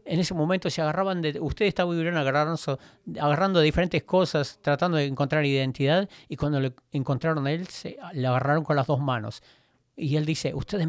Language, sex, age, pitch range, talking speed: English, male, 50-69, 140-180 Hz, 175 wpm